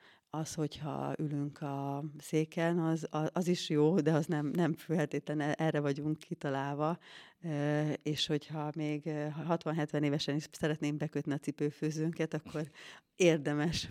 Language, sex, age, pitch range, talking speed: Hungarian, female, 30-49, 145-165 Hz, 125 wpm